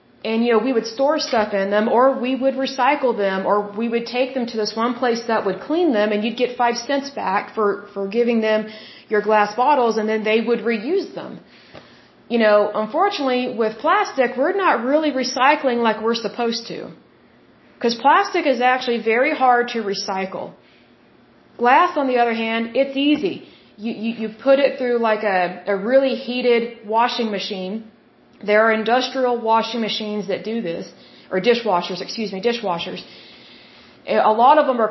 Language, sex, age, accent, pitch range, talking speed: Russian, female, 30-49, American, 210-250 Hz, 180 wpm